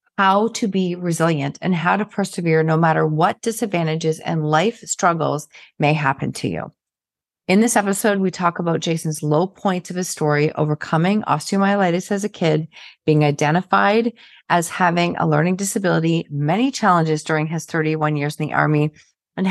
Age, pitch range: 40-59, 160-195 Hz